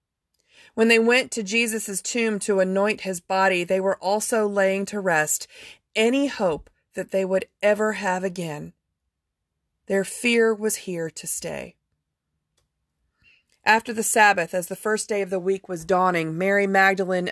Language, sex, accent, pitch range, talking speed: English, female, American, 175-225 Hz, 150 wpm